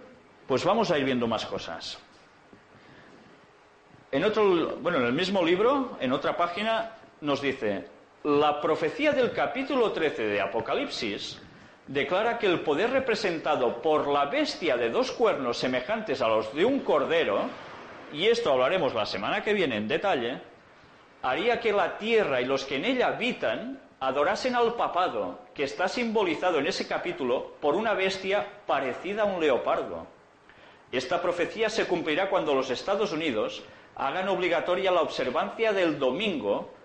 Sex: male